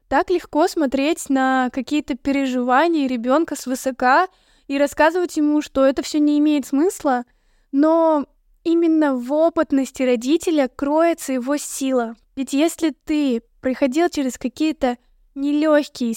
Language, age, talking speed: Russian, 10-29, 125 wpm